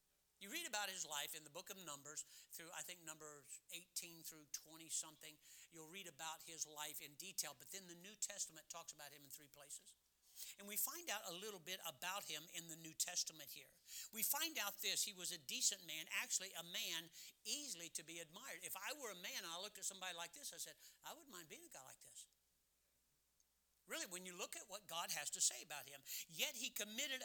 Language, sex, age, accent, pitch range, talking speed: English, male, 60-79, American, 145-195 Hz, 225 wpm